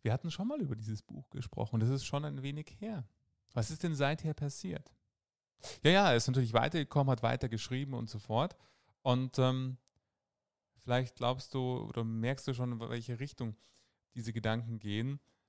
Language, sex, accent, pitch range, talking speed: German, male, German, 115-140 Hz, 175 wpm